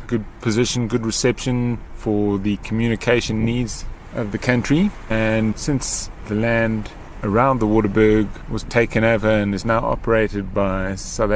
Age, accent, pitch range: 30-49, British, 100-120 Hz